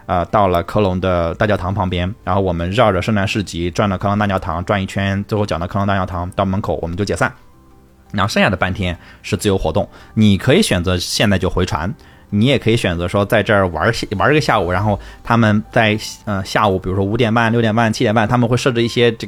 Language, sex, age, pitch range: Chinese, male, 20-39, 95-115 Hz